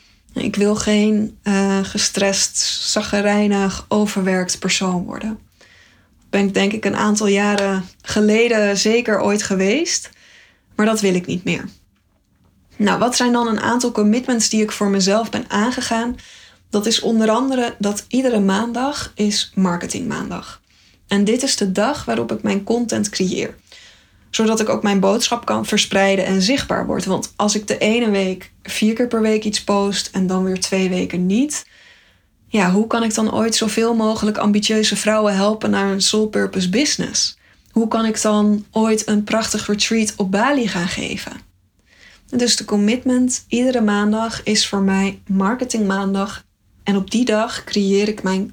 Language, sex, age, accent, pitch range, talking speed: Dutch, female, 10-29, Dutch, 195-225 Hz, 160 wpm